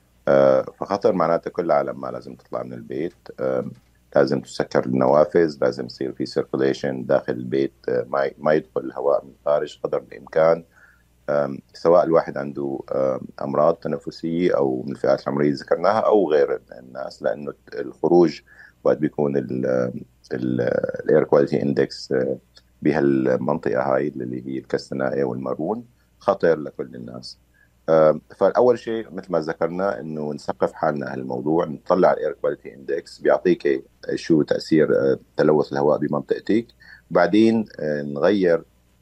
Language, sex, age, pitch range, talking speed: Arabic, male, 50-69, 65-90 Hz, 120 wpm